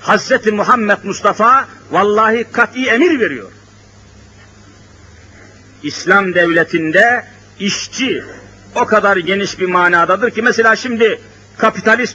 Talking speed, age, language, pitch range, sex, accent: 95 wpm, 60-79, Turkish, 140-220 Hz, male, native